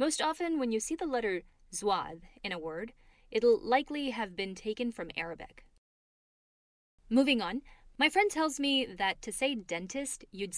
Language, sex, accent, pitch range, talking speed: English, female, American, 180-245 Hz, 165 wpm